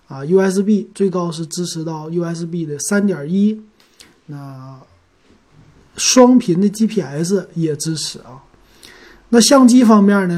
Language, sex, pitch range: Chinese, male, 150-205 Hz